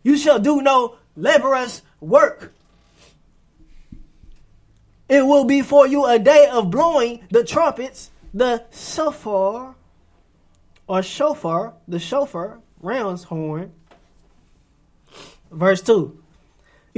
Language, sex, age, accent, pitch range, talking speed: English, male, 20-39, American, 195-290 Hz, 95 wpm